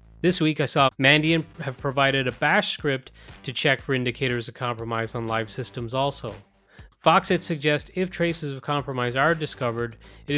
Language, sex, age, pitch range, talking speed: English, male, 30-49, 120-150 Hz, 170 wpm